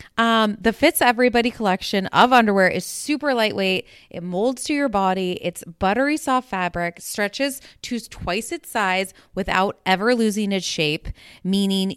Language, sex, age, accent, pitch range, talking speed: English, female, 20-39, American, 170-235 Hz, 150 wpm